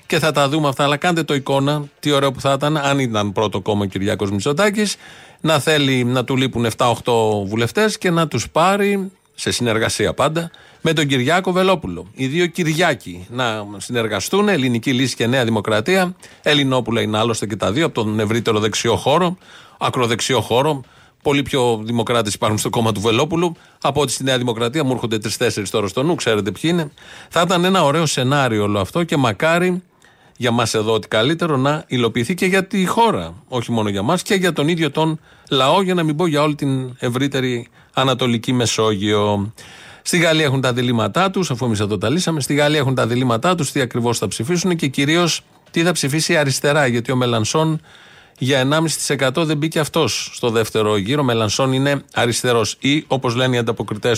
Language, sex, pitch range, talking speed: Greek, male, 115-155 Hz, 185 wpm